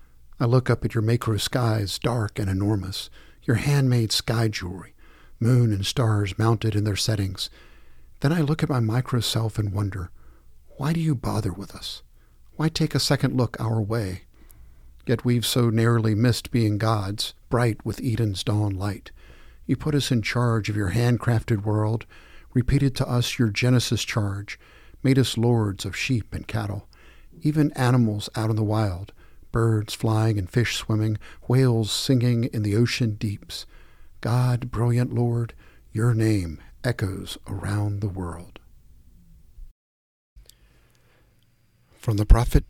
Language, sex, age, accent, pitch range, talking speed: English, male, 50-69, American, 100-120 Hz, 150 wpm